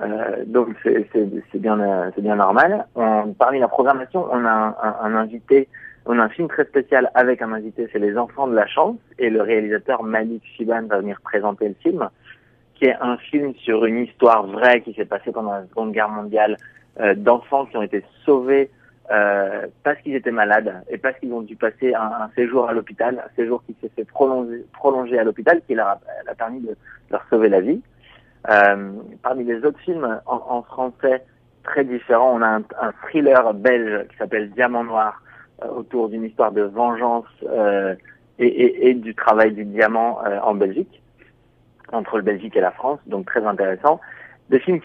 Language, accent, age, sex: French, French, 30-49, male